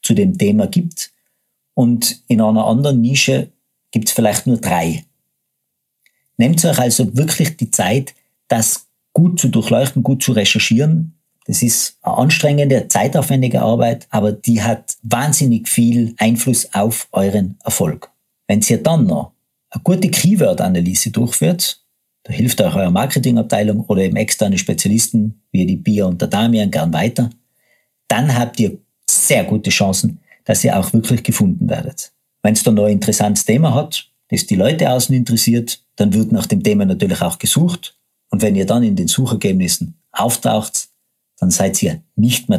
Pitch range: 110-145 Hz